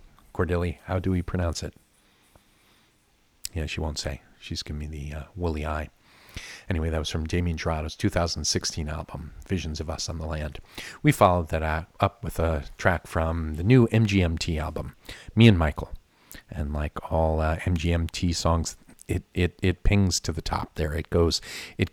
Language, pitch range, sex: English, 75-90 Hz, male